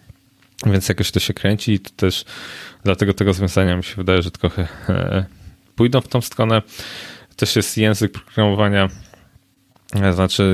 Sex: male